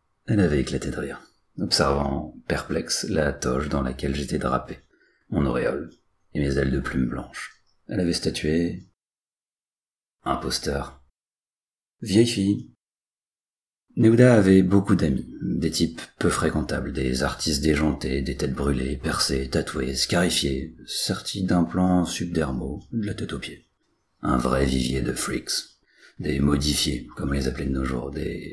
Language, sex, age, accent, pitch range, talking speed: French, male, 40-59, French, 70-100 Hz, 145 wpm